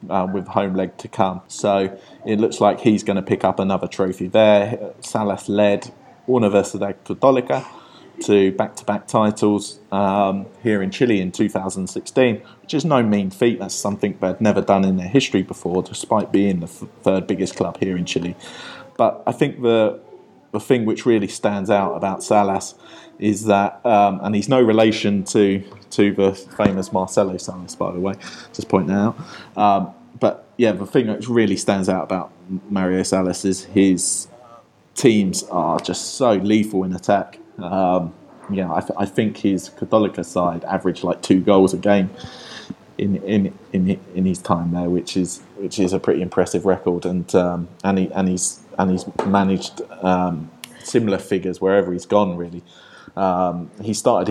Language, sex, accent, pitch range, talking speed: English, male, British, 90-105 Hz, 175 wpm